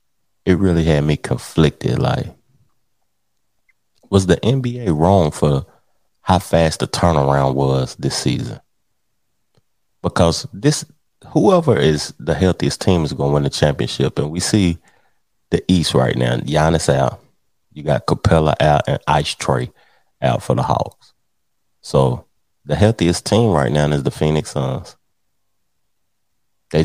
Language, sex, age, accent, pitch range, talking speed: English, male, 30-49, American, 70-95 Hz, 140 wpm